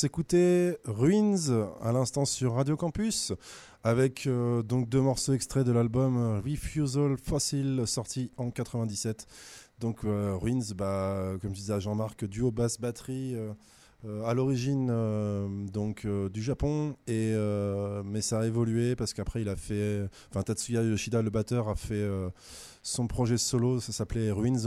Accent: French